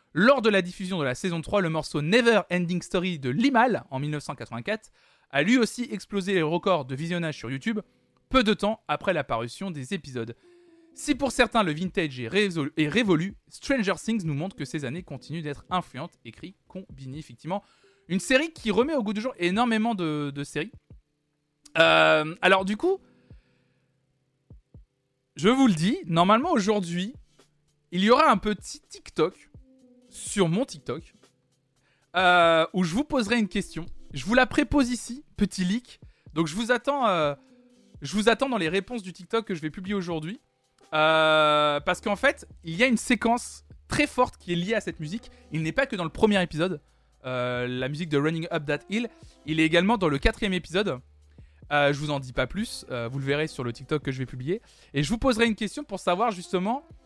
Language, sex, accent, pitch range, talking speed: French, male, French, 150-225 Hz, 195 wpm